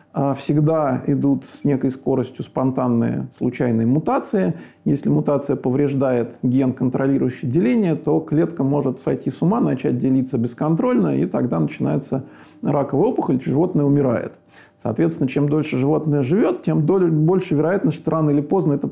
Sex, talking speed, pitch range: male, 140 wpm, 135-160 Hz